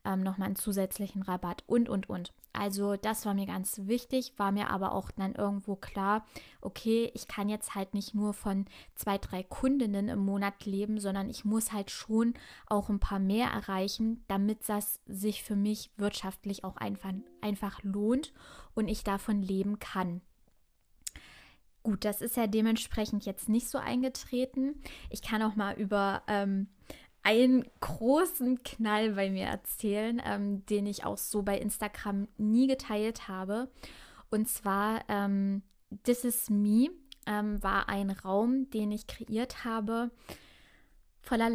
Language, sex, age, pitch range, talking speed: German, female, 20-39, 200-225 Hz, 150 wpm